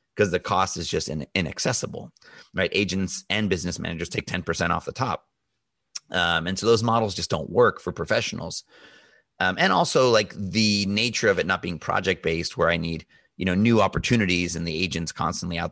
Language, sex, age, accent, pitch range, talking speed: English, male, 30-49, American, 90-115 Hz, 185 wpm